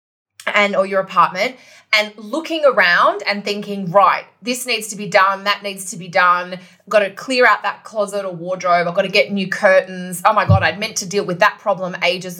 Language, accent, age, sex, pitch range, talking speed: English, Australian, 20-39, female, 185-240 Hz, 215 wpm